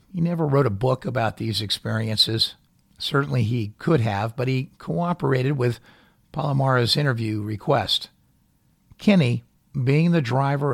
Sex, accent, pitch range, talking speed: male, American, 115-145 Hz, 130 wpm